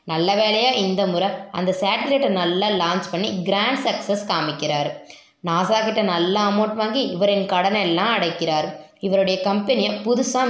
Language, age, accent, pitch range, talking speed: Tamil, 20-39, native, 185-240 Hz, 135 wpm